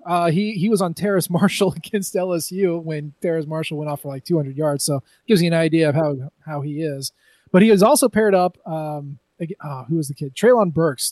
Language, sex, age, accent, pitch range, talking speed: English, male, 20-39, American, 155-185 Hz, 245 wpm